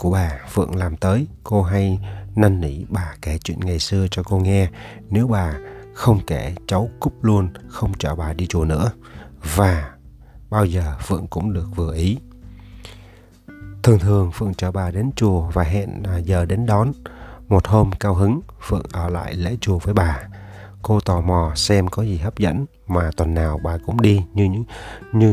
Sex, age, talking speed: male, 30-49, 185 wpm